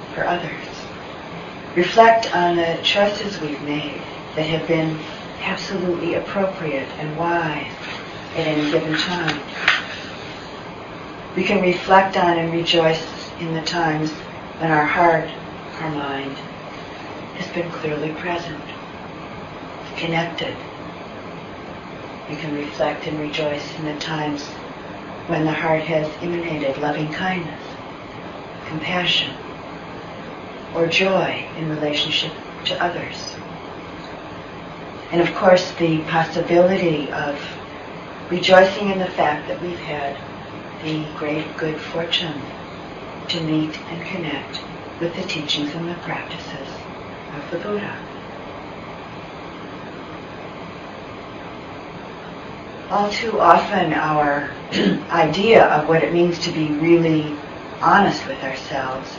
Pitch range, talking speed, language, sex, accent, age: 155-175 Hz, 105 wpm, English, female, American, 40-59